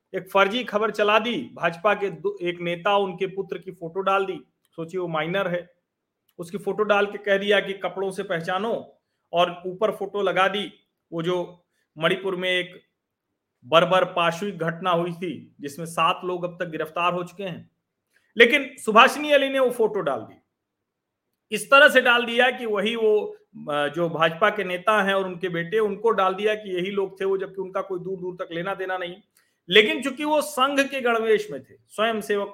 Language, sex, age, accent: Hindi, male, 40-59, native